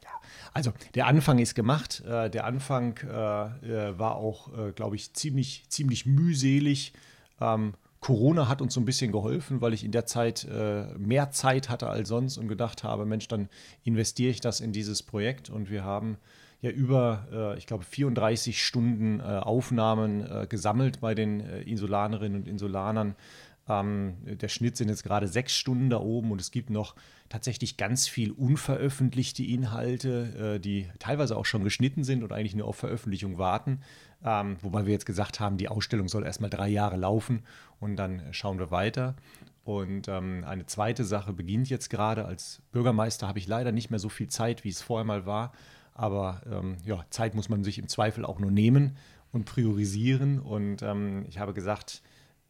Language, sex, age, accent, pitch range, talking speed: German, male, 30-49, German, 105-125 Hz, 170 wpm